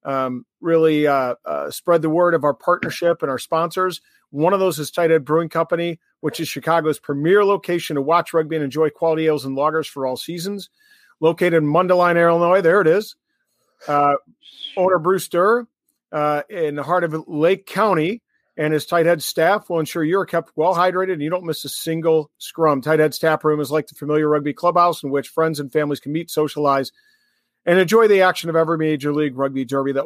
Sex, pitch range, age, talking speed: male, 145-180 Hz, 40-59, 200 wpm